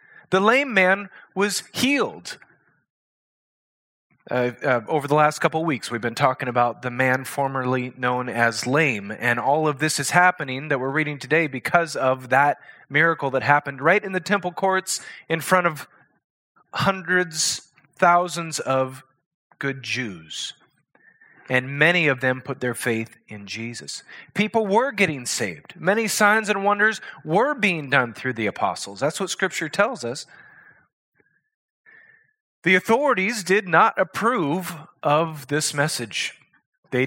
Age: 30-49